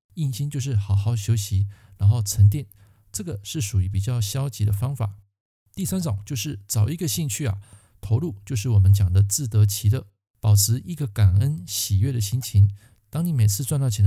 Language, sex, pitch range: Chinese, male, 100-130 Hz